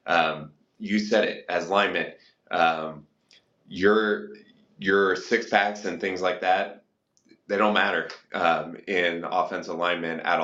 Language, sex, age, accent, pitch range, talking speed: English, male, 20-39, American, 85-100 Hz, 130 wpm